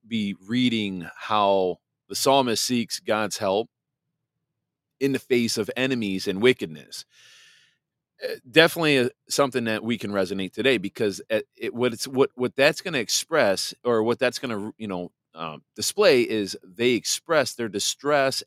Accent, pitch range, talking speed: American, 95-135 Hz, 150 wpm